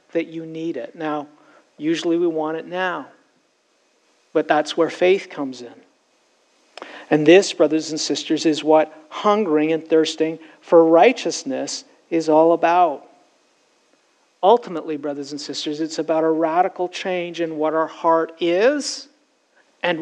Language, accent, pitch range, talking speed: English, American, 155-180 Hz, 140 wpm